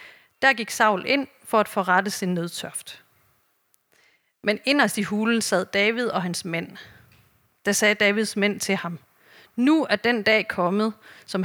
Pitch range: 190-235 Hz